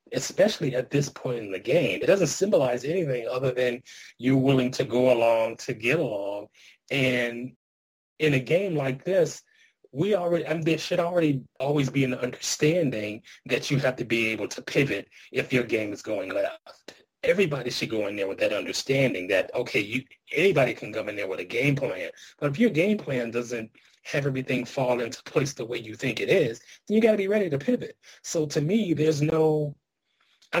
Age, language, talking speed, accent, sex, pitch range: 30-49, English, 195 wpm, American, male, 120-155 Hz